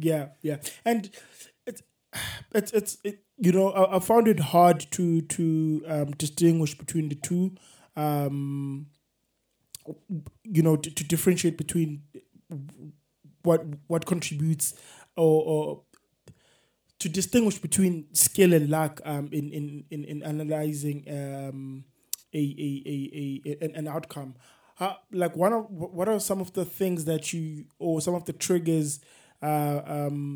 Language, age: English, 20-39